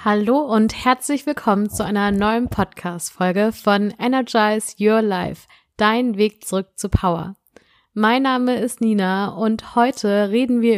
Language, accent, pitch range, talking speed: German, German, 195-230 Hz, 140 wpm